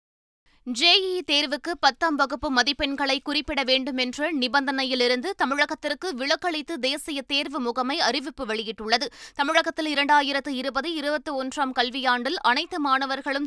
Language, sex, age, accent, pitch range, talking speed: Tamil, female, 20-39, native, 245-305 Hz, 100 wpm